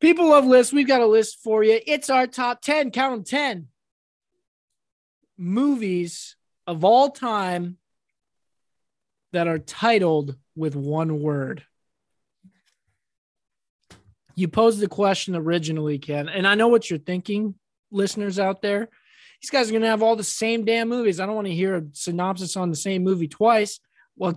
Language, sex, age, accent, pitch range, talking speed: English, male, 20-39, American, 170-225 Hz, 160 wpm